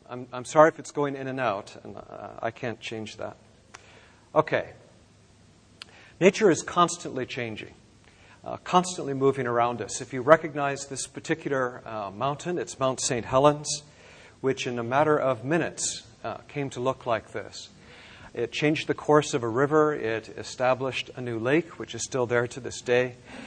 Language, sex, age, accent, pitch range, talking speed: English, male, 50-69, American, 115-145 Hz, 170 wpm